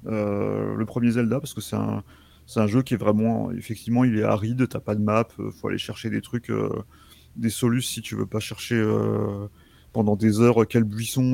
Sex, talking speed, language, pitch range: male, 215 wpm, French, 105-120 Hz